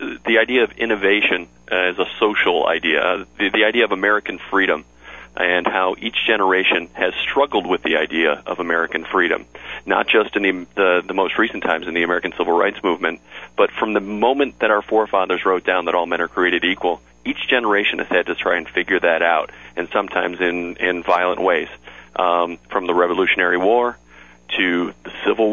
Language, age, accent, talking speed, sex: English, 40-59, American, 185 wpm, male